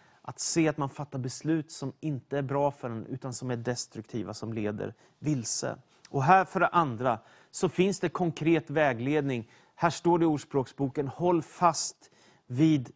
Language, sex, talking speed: Swedish, male, 170 wpm